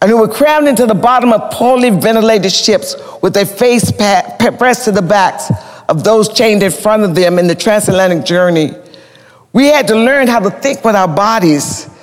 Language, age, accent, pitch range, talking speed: English, 50-69, American, 180-225 Hz, 200 wpm